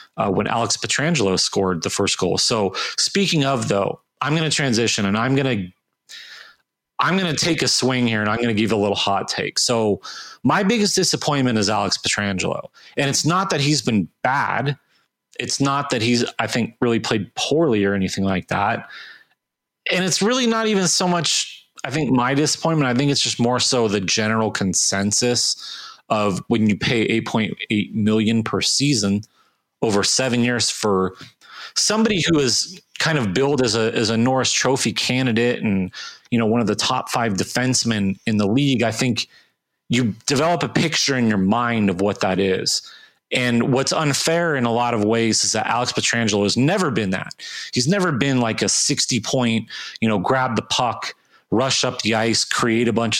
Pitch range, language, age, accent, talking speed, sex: 110-140 Hz, English, 30-49, American, 190 wpm, male